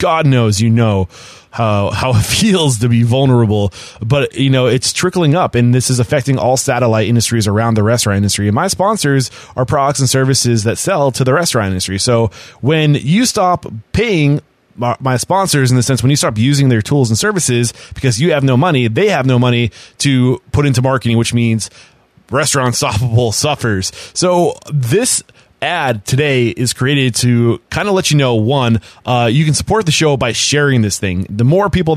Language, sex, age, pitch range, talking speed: English, male, 20-39, 115-150 Hz, 195 wpm